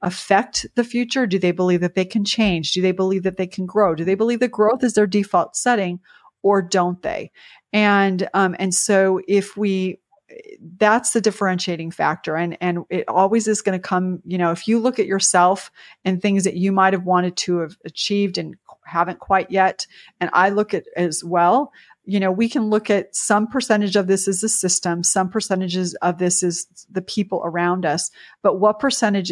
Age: 30-49